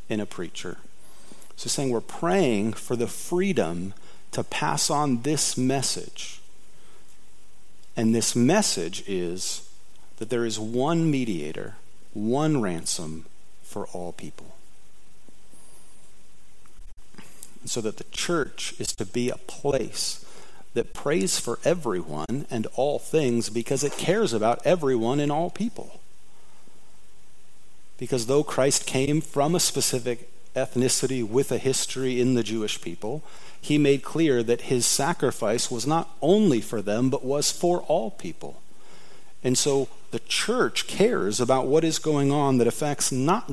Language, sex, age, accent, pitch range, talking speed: English, male, 40-59, American, 110-140 Hz, 135 wpm